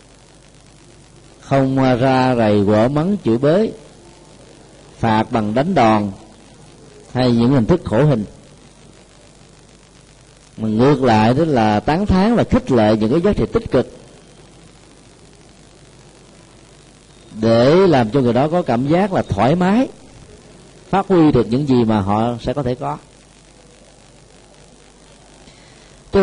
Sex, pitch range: male, 115-160 Hz